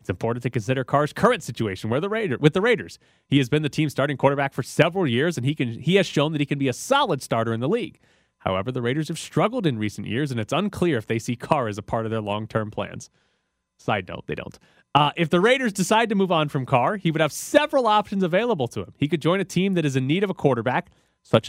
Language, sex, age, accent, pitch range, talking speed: English, male, 30-49, American, 125-180 Hz, 255 wpm